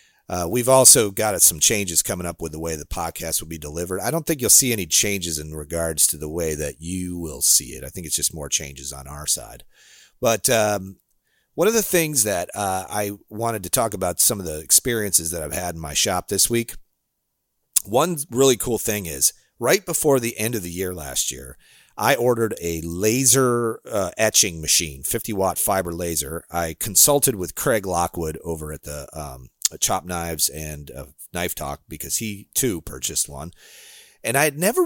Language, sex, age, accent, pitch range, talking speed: English, male, 40-59, American, 80-115 Hz, 200 wpm